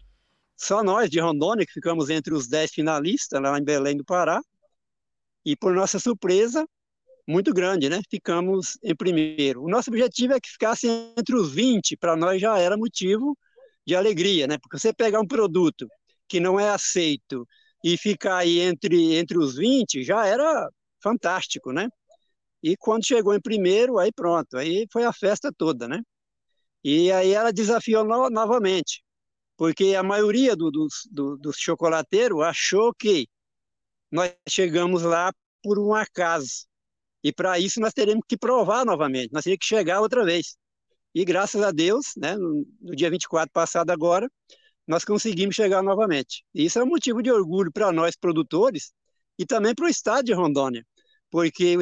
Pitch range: 170-235 Hz